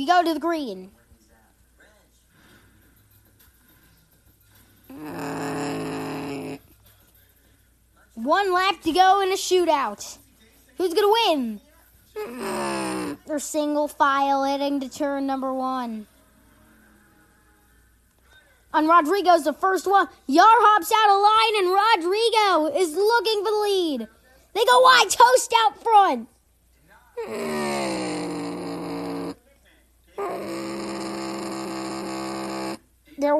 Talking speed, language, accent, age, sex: 85 wpm, English, American, 20-39, female